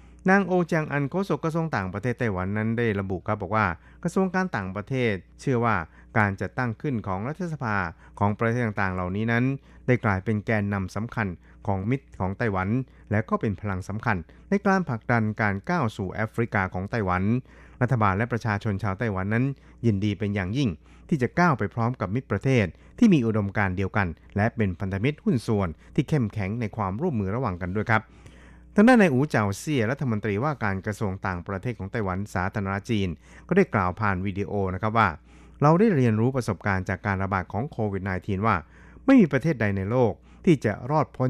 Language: Thai